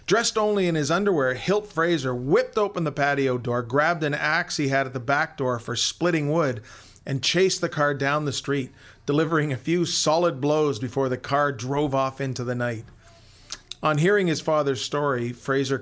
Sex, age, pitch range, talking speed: male, 40-59, 120-155 Hz, 190 wpm